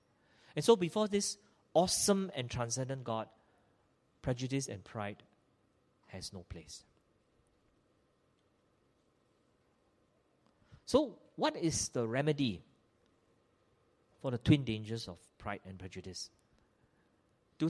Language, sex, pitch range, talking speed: English, male, 110-150 Hz, 95 wpm